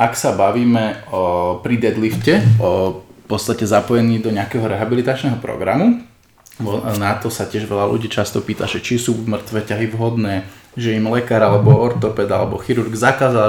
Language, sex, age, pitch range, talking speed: Slovak, male, 20-39, 105-125 Hz, 165 wpm